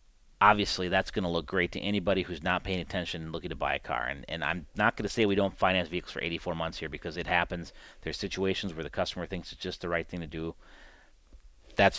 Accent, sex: American, male